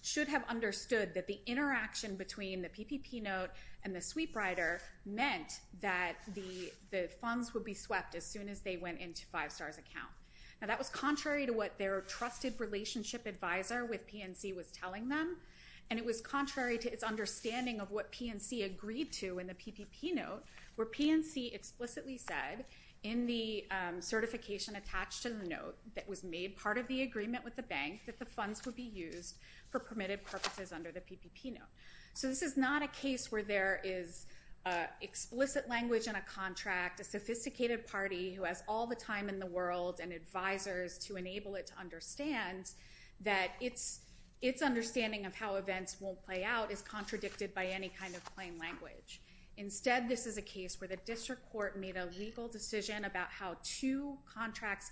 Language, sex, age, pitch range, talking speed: English, female, 30-49, 190-240 Hz, 180 wpm